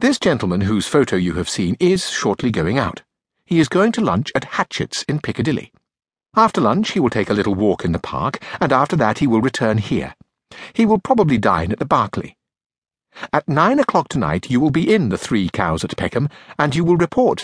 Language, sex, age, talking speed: English, male, 60-79, 215 wpm